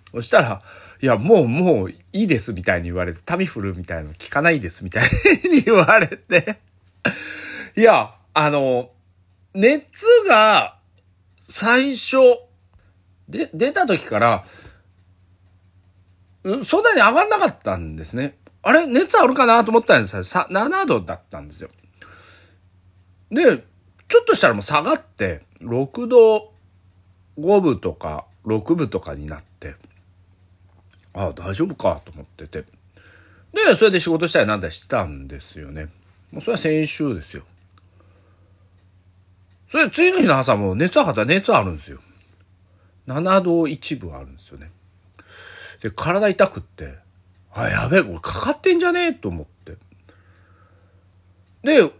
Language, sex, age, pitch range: Japanese, male, 40-59, 90-150 Hz